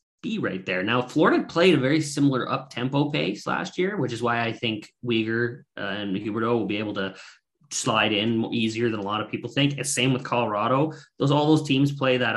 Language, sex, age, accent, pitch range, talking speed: English, male, 20-39, American, 115-140 Hz, 220 wpm